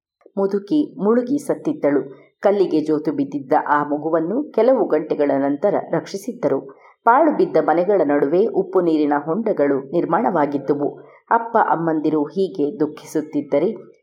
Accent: native